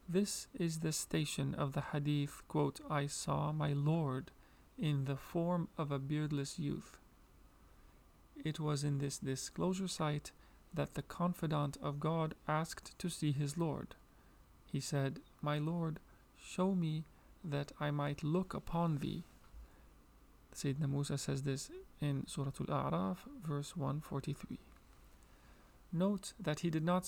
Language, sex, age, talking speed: English, male, 40-59, 135 wpm